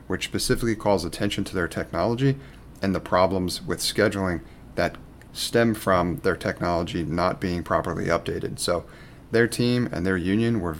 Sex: male